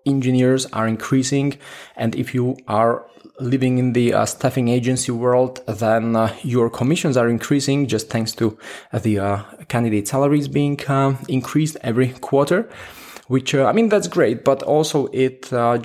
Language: English